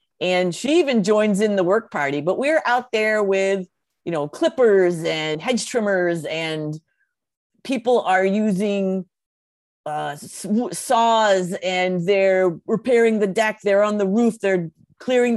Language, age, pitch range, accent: English, 40-59, 185-230 Hz, American